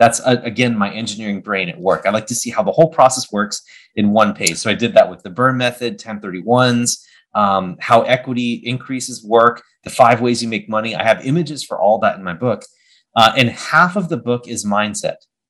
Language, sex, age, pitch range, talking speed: English, male, 30-49, 110-145 Hz, 215 wpm